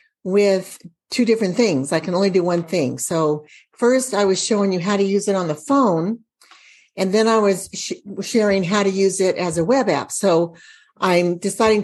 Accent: American